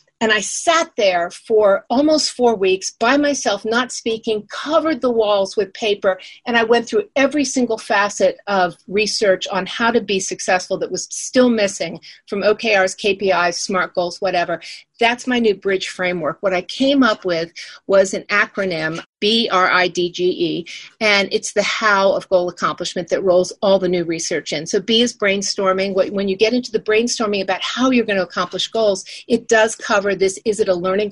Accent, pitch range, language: American, 195-255 Hz, English